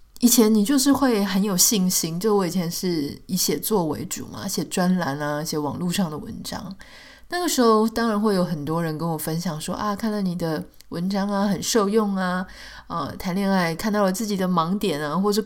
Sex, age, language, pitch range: female, 20-39, Chinese, 175-220 Hz